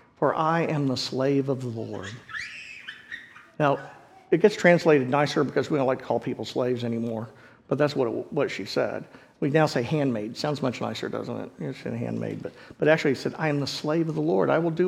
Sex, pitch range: male, 140-180 Hz